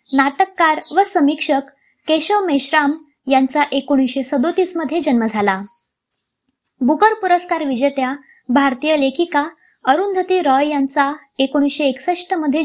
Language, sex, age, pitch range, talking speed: Marathi, male, 20-39, 270-330 Hz, 105 wpm